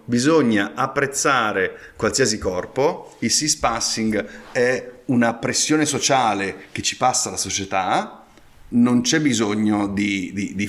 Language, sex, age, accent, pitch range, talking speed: Italian, male, 30-49, native, 100-140 Hz, 120 wpm